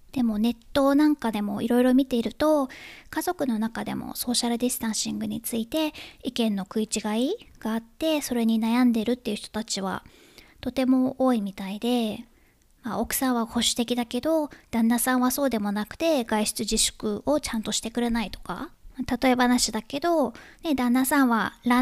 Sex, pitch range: male, 220-265 Hz